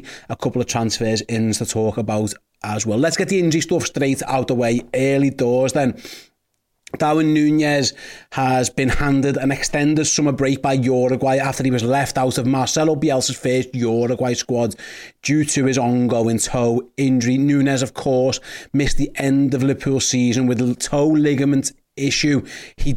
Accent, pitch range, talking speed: British, 125-150 Hz, 170 wpm